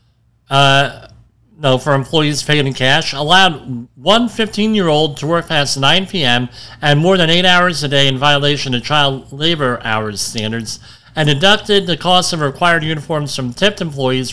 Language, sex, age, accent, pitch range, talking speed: English, male, 40-59, American, 120-165 Hz, 165 wpm